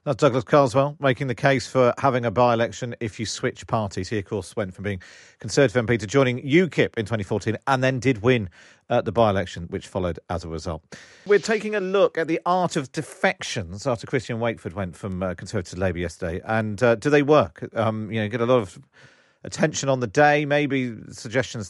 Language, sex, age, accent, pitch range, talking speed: English, male, 40-59, British, 105-150 Hz, 205 wpm